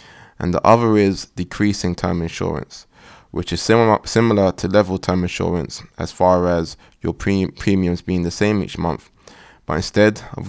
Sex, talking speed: male, 160 wpm